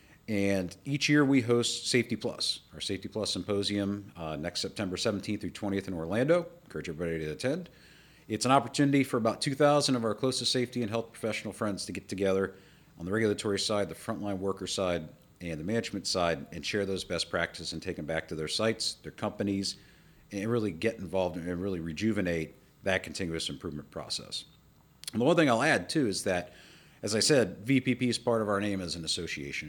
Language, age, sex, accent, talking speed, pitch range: English, 40-59, male, American, 200 wpm, 90-120 Hz